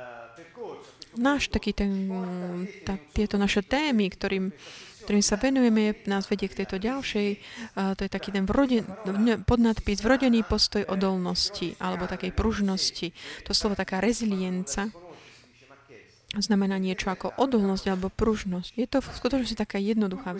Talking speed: 135 wpm